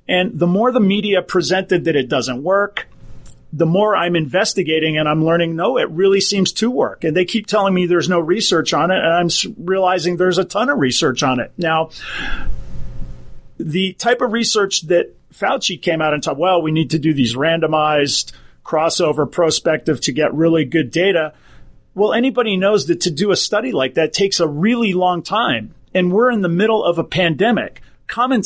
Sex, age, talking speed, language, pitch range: male, 40-59, 195 wpm, English, 165-210 Hz